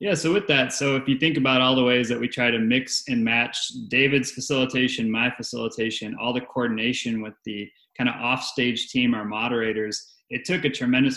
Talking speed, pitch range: 205 wpm, 110-125 Hz